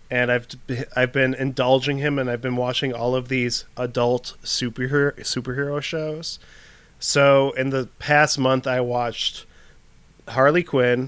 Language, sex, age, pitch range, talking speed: English, male, 20-39, 120-145 Hz, 140 wpm